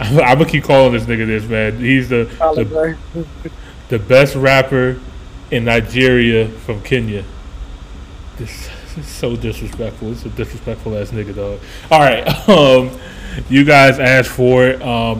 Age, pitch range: 20-39, 105-125 Hz